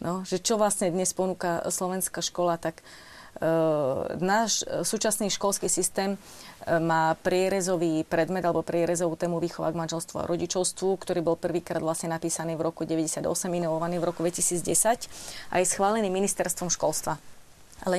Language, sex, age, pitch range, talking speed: Slovak, female, 30-49, 165-190 Hz, 140 wpm